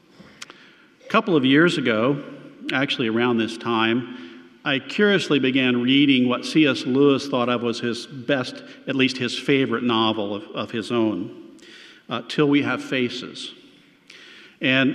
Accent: American